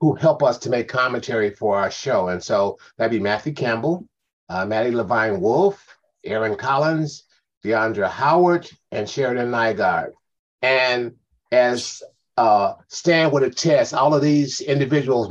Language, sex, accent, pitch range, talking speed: English, male, American, 115-145 Hz, 135 wpm